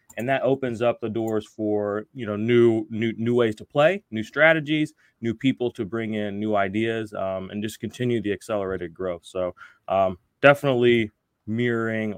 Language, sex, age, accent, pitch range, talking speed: English, male, 20-39, American, 110-145 Hz, 170 wpm